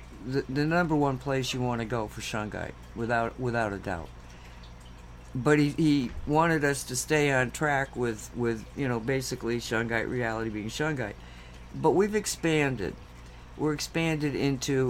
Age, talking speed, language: 60-79, 155 wpm, English